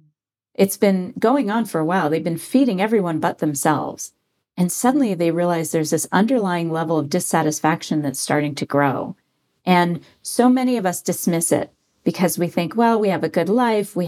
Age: 40-59